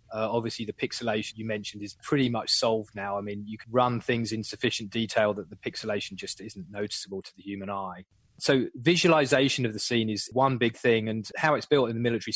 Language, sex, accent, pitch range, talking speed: English, male, British, 110-130 Hz, 225 wpm